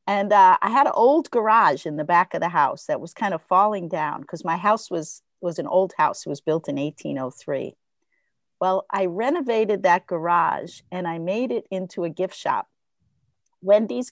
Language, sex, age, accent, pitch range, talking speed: English, female, 50-69, American, 180-225 Hz, 195 wpm